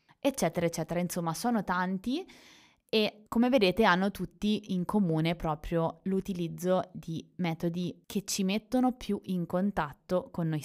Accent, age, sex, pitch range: native, 20-39, female, 170-205 Hz